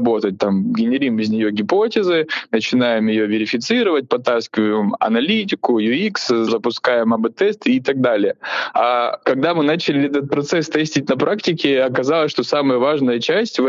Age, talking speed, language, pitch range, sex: 20-39, 145 wpm, Russian, 115-150 Hz, male